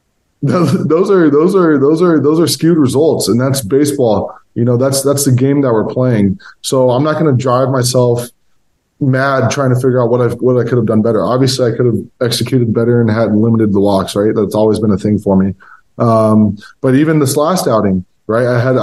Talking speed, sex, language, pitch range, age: 225 wpm, male, English, 115-135 Hz, 20-39